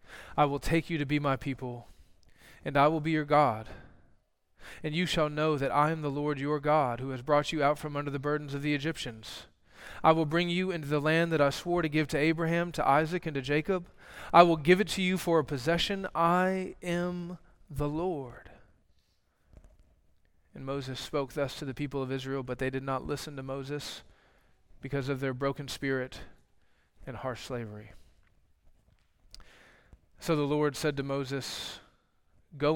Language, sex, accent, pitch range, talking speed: English, male, American, 120-155 Hz, 185 wpm